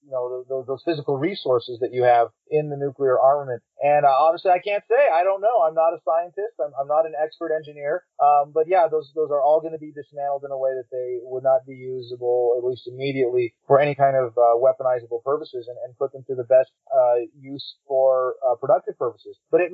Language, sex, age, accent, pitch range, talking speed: English, male, 30-49, American, 140-175 Hz, 235 wpm